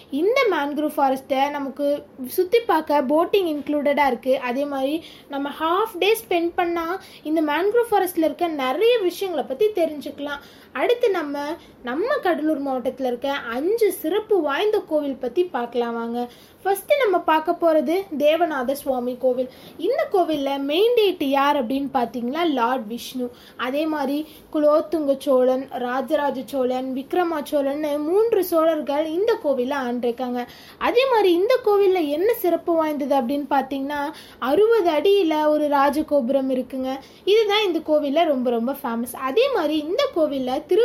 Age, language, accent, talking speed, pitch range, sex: 20-39, Tamil, native, 110 wpm, 270-350 Hz, female